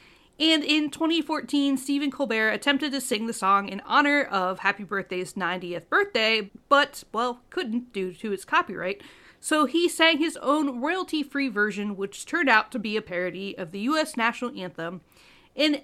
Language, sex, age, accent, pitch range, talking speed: English, female, 40-59, American, 180-285 Hz, 165 wpm